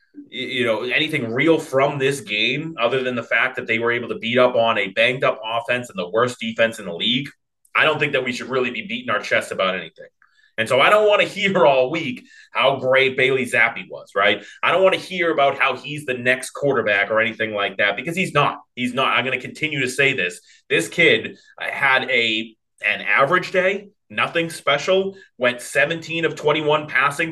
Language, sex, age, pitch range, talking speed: English, male, 30-49, 125-155 Hz, 215 wpm